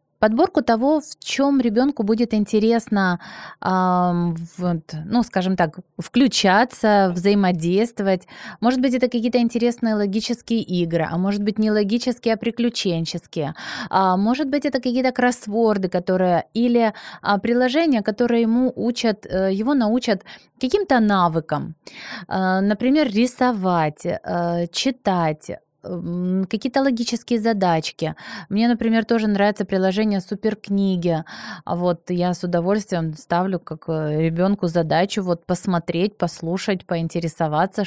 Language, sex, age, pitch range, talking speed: Ukrainian, female, 20-39, 180-235 Hz, 105 wpm